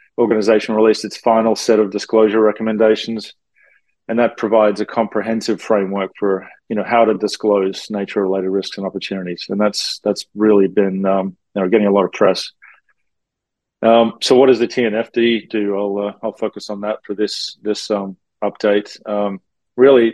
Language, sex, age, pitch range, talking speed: English, male, 40-59, 100-115 Hz, 175 wpm